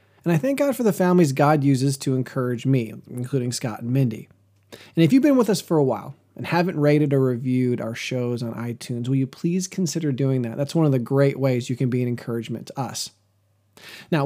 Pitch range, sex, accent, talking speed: 125-170 Hz, male, American, 225 wpm